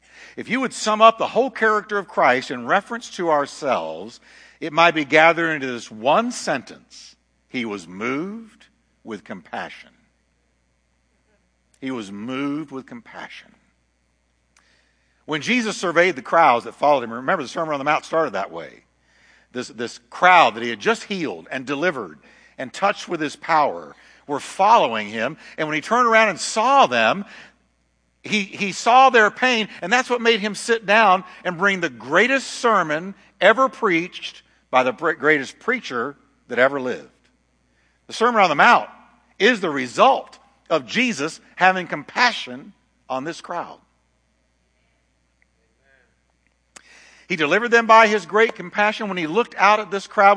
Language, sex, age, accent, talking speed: English, male, 60-79, American, 155 wpm